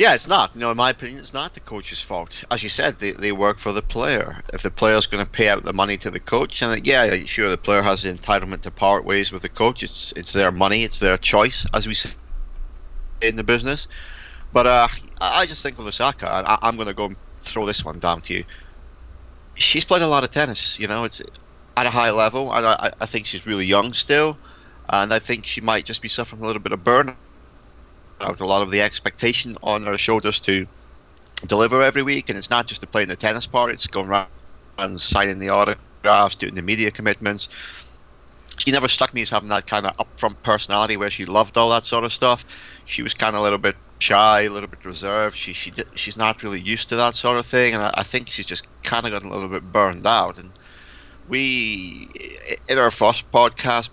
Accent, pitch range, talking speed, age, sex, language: British, 95-115 Hz, 235 wpm, 30-49, male, English